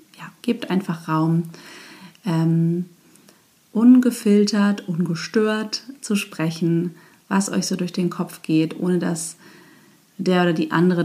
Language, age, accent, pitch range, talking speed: German, 30-49, German, 165-195 Hz, 115 wpm